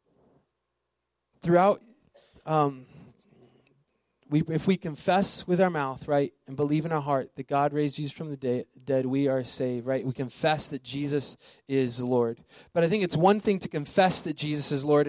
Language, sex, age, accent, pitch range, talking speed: English, male, 20-39, American, 145-170 Hz, 170 wpm